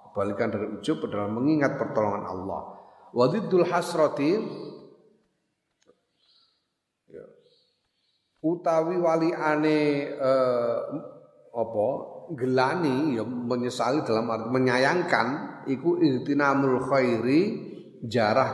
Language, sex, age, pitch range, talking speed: Indonesian, male, 40-59, 115-160 Hz, 75 wpm